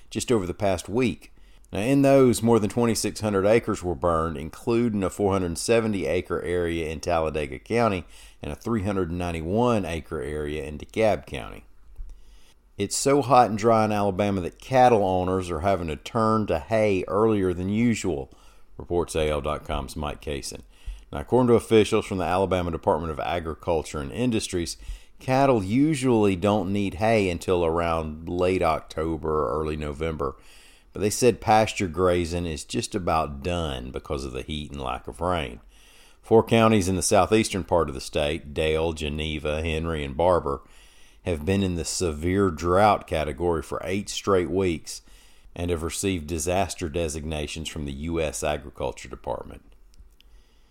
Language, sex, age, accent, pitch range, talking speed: English, male, 40-59, American, 80-105 Hz, 150 wpm